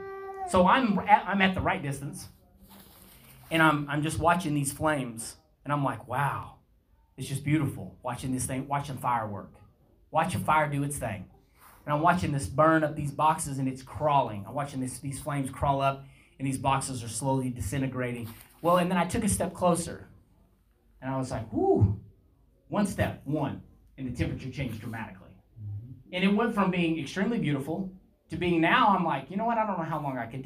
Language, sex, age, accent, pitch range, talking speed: English, male, 30-49, American, 120-170 Hz, 195 wpm